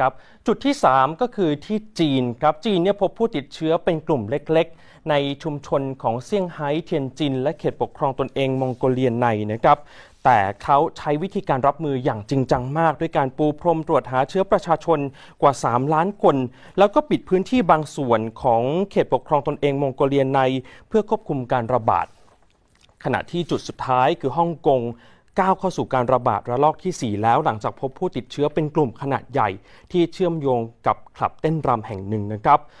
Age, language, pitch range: 30-49, Thai, 130-170 Hz